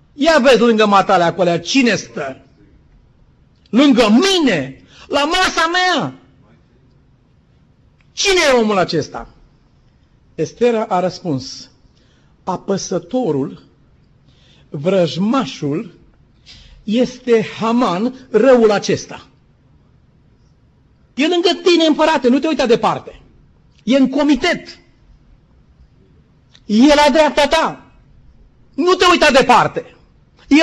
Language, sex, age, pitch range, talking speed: Romanian, male, 50-69, 185-290 Hz, 90 wpm